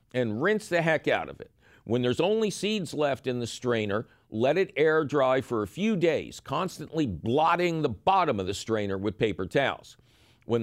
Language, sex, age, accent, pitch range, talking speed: English, male, 50-69, American, 120-165 Hz, 190 wpm